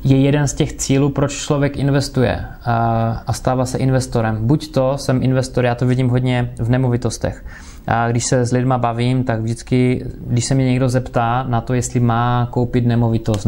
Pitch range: 115-135 Hz